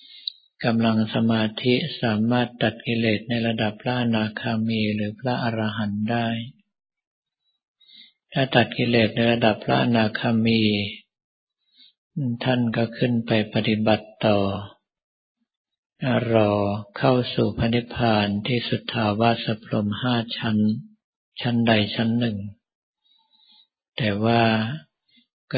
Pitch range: 110-125 Hz